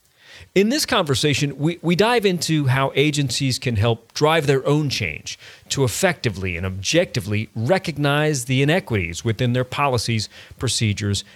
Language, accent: English, American